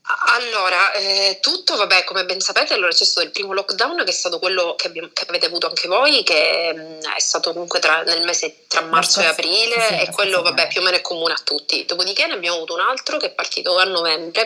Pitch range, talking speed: 170-235 Hz, 225 wpm